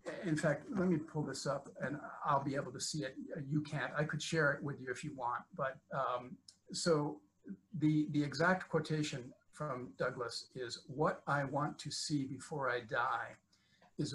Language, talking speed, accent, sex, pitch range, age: English, 185 wpm, American, male, 130-160 Hz, 50-69